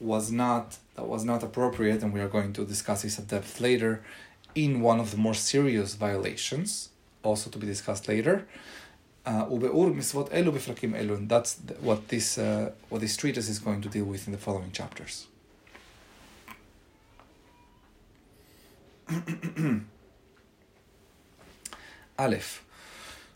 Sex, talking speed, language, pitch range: male, 120 wpm, English, 105-130 Hz